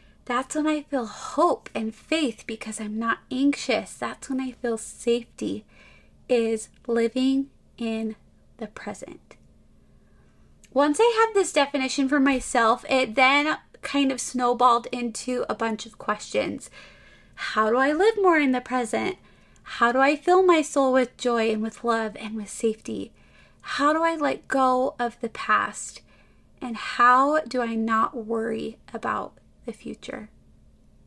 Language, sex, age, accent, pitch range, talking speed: English, female, 20-39, American, 230-290 Hz, 150 wpm